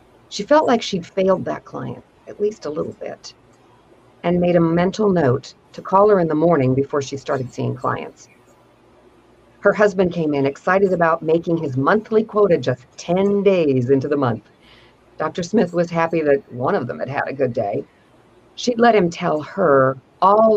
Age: 50-69